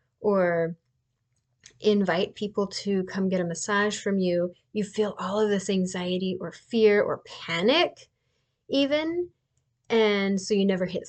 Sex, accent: female, American